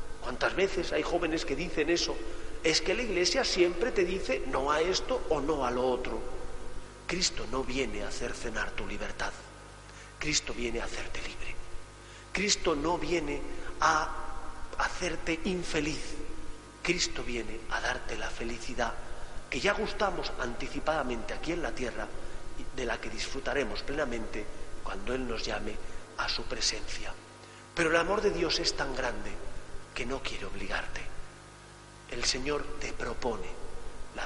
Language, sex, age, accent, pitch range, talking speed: Spanish, male, 40-59, Spanish, 115-165 Hz, 145 wpm